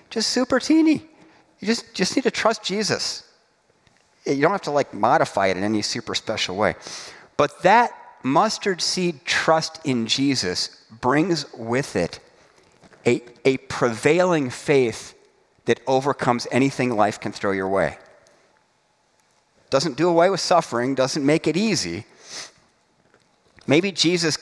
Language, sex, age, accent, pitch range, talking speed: English, male, 40-59, American, 120-190 Hz, 135 wpm